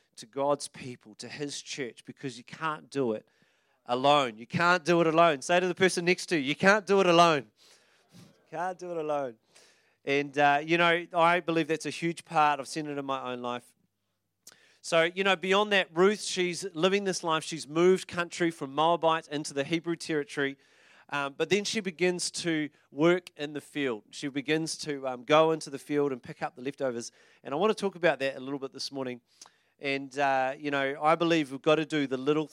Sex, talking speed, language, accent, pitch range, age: male, 215 wpm, English, Australian, 135-170 Hz, 30-49